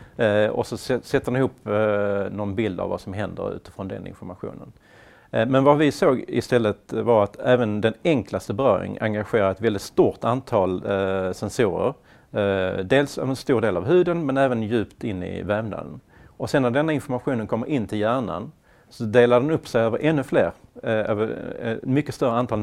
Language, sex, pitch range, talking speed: English, male, 100-125 Hz, 185 wpm